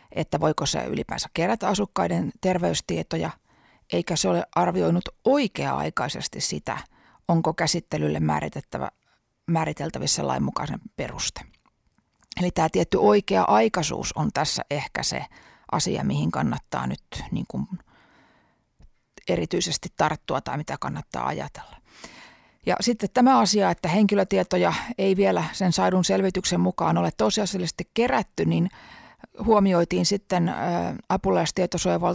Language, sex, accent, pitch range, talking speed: Finnish, female, native, 160-195 Hz, 105 wpm